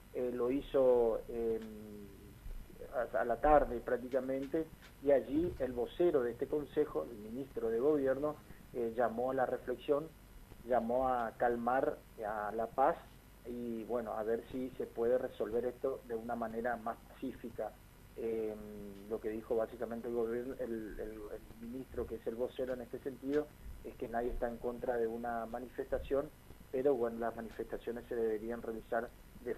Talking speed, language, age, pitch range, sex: 155 wpm, Spanish, 40-59, 115-130 Hz, male